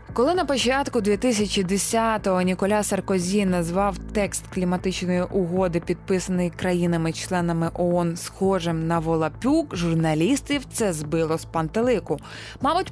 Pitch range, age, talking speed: 185-270 Hz, 20-39, 105 wpm